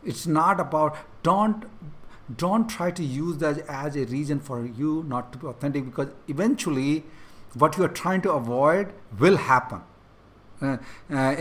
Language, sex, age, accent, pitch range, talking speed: English, male, 50-69, Indian, 145-185 Hz, 160 wpm